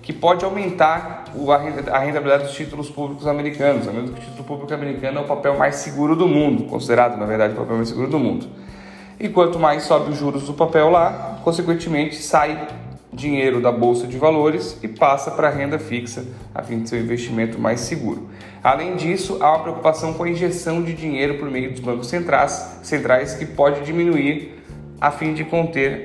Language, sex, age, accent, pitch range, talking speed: Portuguese, male, 10-29, Brazilian, 120-150 Hz, 195 wpm